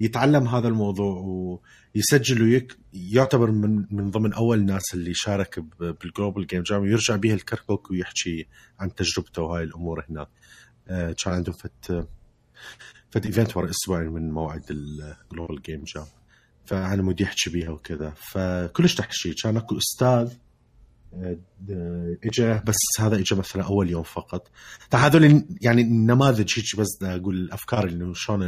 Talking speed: 135 wpm